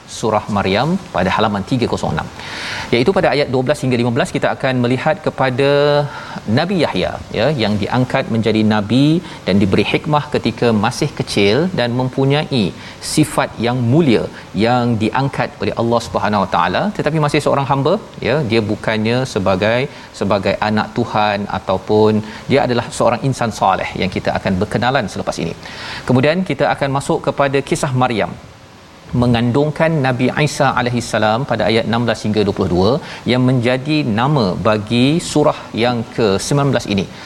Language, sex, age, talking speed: Malayalam, male, 40-59, 140 wpm